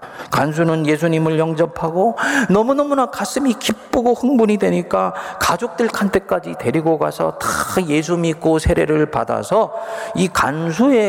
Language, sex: Korean, male